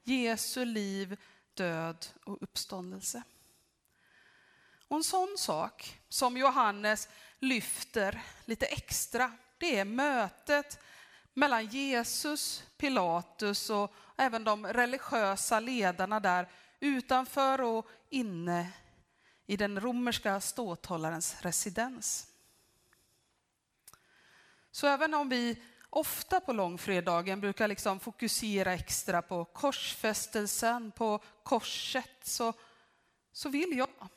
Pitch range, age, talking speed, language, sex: 190-250 Hz, 30-49, 95 wpm, Swedish, female